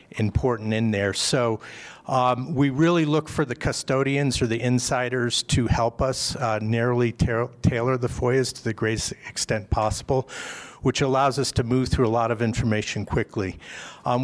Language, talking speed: English, 165 wpm